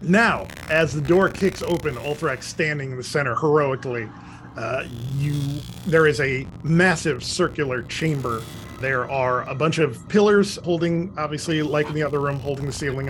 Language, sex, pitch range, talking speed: English, male, 140-175 Hz, 165 wpm